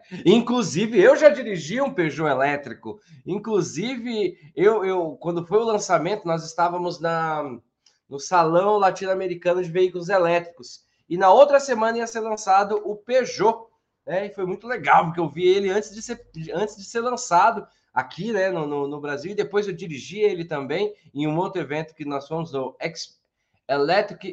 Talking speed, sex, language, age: 175 wpm, male, Portuguese, 20-39